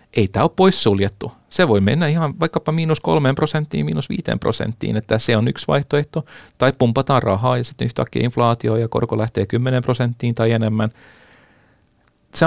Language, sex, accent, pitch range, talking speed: Finnish, male, native, 105-130 Hz, 170 wpm